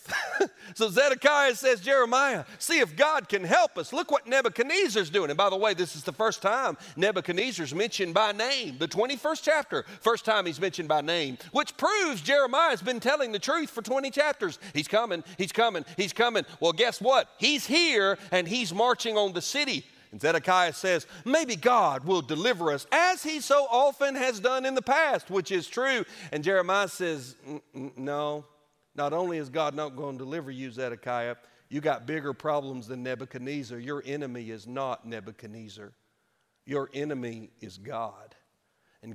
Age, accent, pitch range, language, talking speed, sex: 40-59, American, 140-235 Hz, English, 180 wpm, male